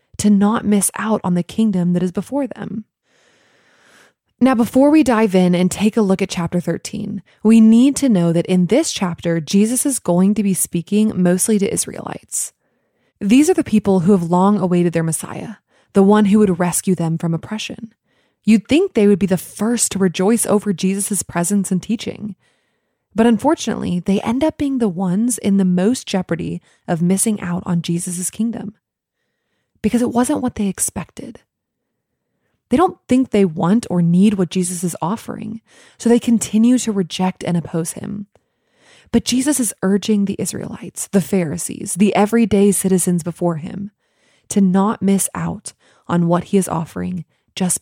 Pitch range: 180-220 Hz